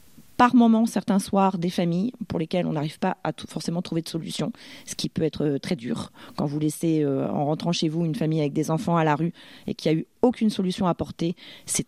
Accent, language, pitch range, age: French, French, 165-215 Hz, 40-59